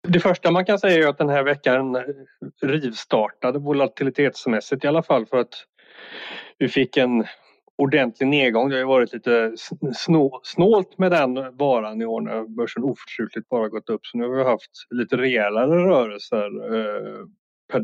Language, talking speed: Swedish, 160 wpm